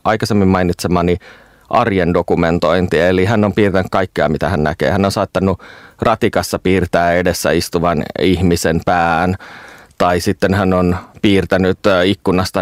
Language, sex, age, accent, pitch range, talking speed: Finnish, male, 30-49, native, 85-100 Hz, 130 wpm